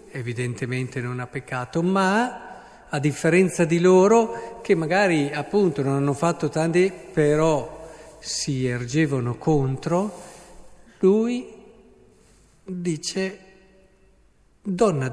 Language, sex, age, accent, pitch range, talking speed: Italian, male, 50-69, native, 135-200 Hz, 90 wpm